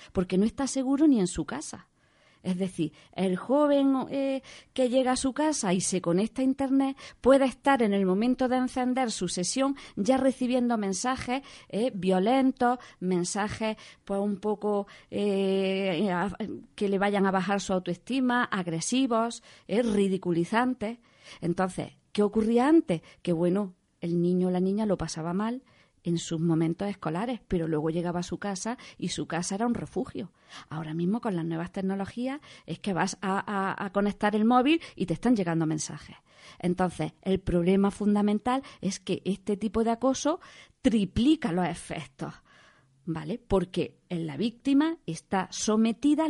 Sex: female